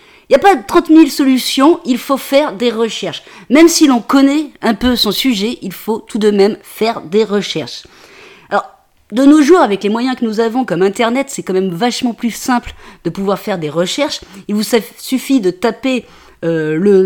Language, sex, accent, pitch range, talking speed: French, female, French, 200-270 Hz, 205 wpm